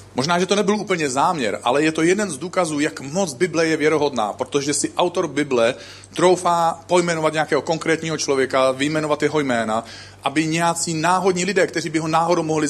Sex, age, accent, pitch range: male, 40-59, native, 100-160 Hz